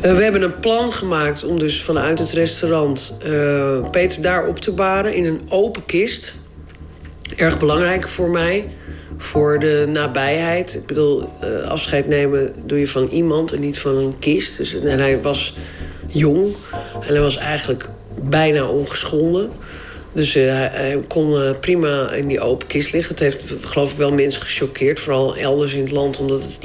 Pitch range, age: 135-160 Hz, 40-59